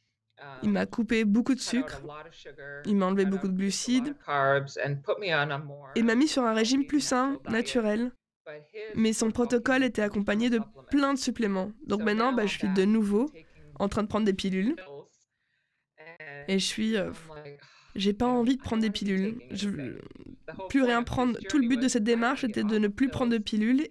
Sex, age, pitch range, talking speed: female, 20-39, 195-245 Hz, 185 wpm